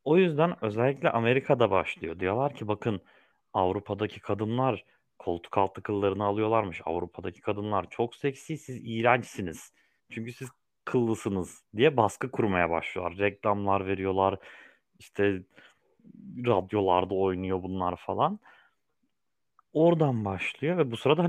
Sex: male